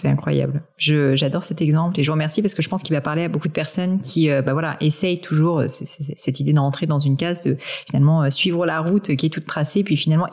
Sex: female